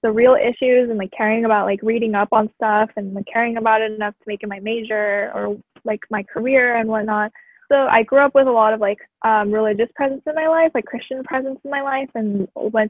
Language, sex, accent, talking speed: English, female, American, 240 wpm